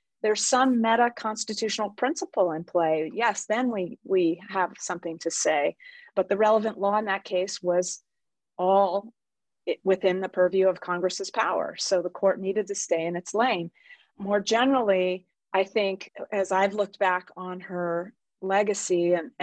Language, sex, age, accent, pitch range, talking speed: English, female, 30-49, American, 180-225 Hz, 155 wpm